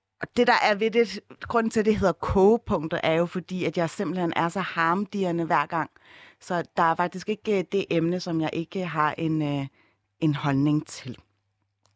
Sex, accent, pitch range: female, native, 160-215 Hz